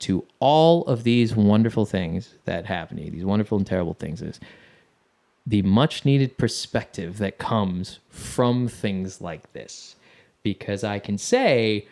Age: 20-39